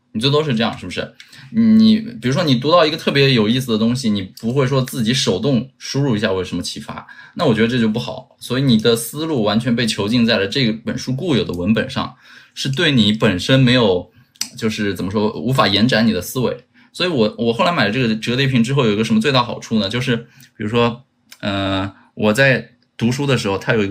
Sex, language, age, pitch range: male, Chinese, 20-39, 110-125 Hz